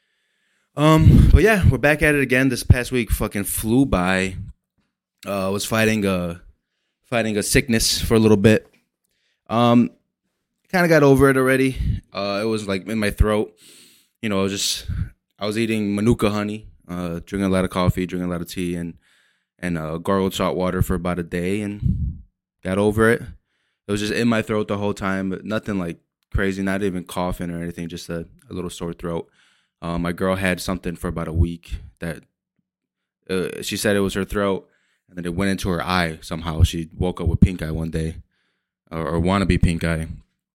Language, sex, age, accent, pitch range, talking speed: English, male, 20-39, American, 90-110 Hz, 200 wpm